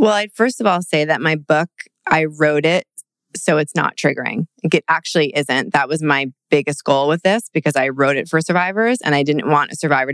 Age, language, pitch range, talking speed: 30-49, English, 150-180 Hz, 225 wpm